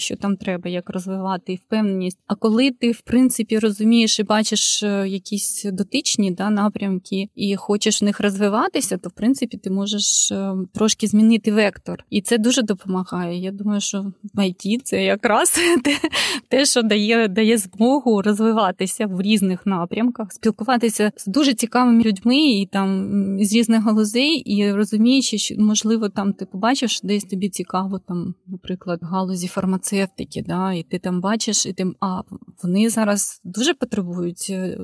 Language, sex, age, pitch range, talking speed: Ukrainian, female, 20-39, 190-225 Hz, 155 wpm